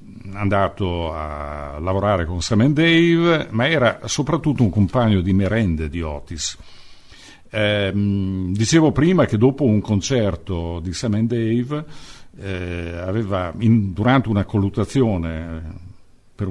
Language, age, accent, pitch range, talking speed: Italian, 50-69, native, 90-120 Hz, 125 wpm